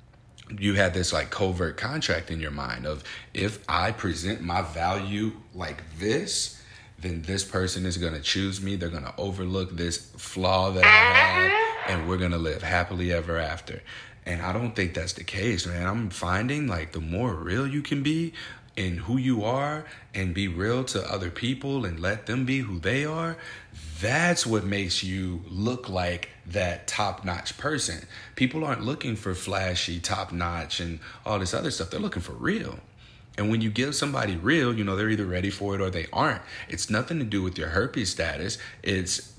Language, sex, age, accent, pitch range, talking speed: English, male, 40-59, American, 90-115 Hz, 195 wpm